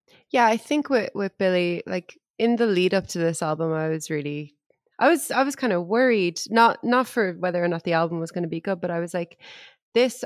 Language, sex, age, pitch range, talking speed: English, female, 20-39, 155-195 Hz, 245 wpm